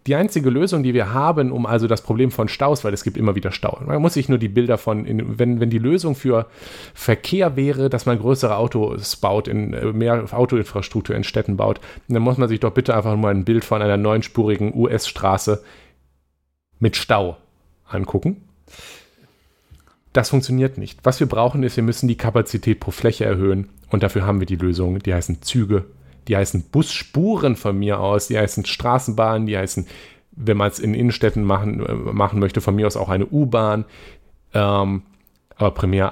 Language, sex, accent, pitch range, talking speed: German, male, German, 100-125 Hz, 185 wpm